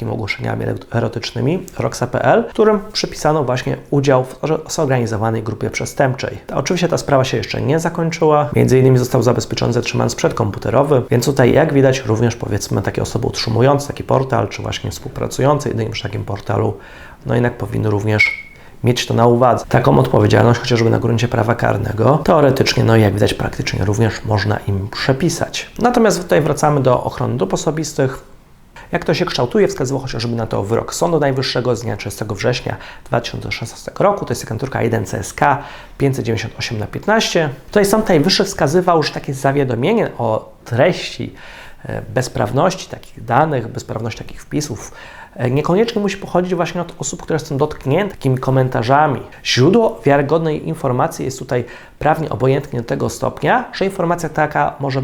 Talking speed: 155 wpm